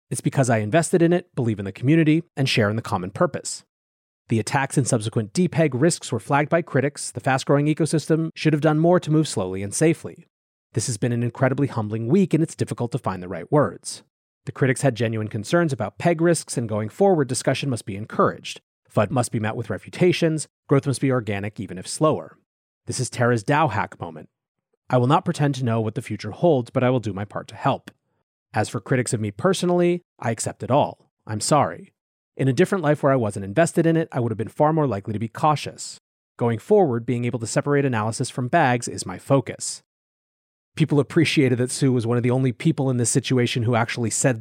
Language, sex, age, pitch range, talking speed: English, male, 30-49, 115-155 Hz, 225 wpm